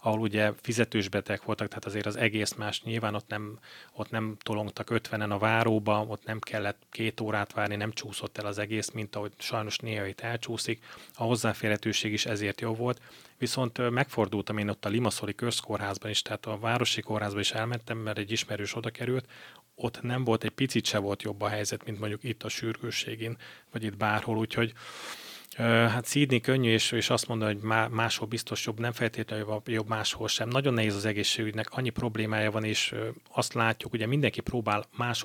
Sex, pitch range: male, 105-115 Hz